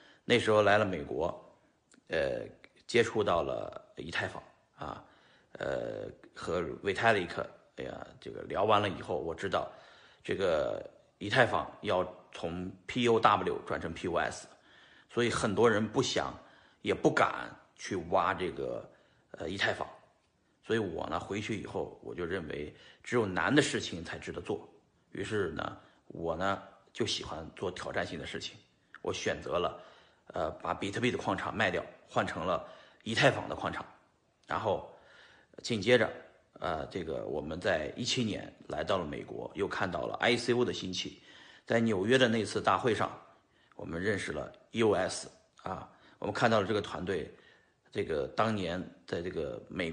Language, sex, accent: Chinese, male, native